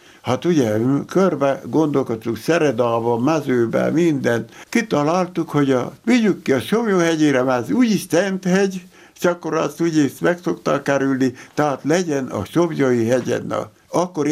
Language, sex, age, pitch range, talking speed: Hungarian, male, 60-79, 135-175 Hz, 130 wpm